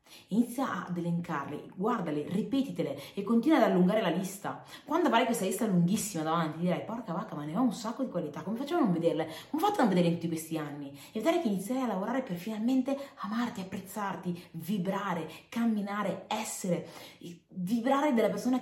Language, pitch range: Italian, 165-235 Hz